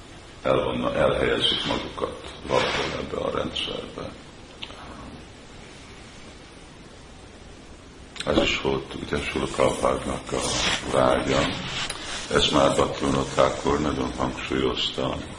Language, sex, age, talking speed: Hungarian, male, 50-69, 75 wpm